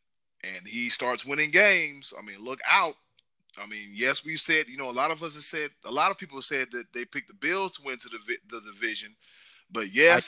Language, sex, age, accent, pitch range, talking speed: English, male, 30-49, American, 125-160 Hz, 245 wpm